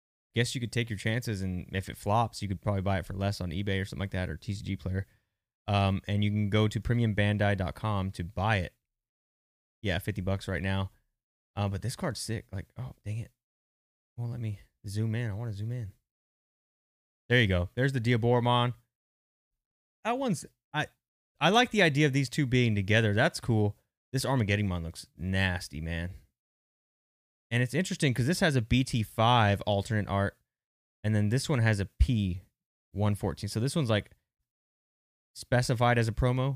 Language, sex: English, male